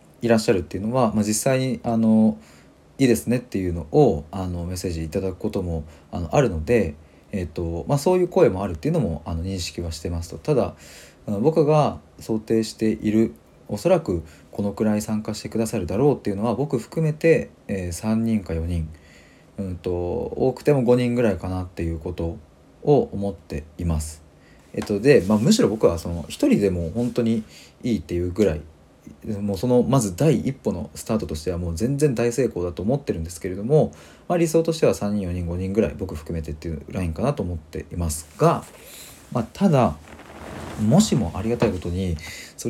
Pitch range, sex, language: 85-115 Hz, male, Japanese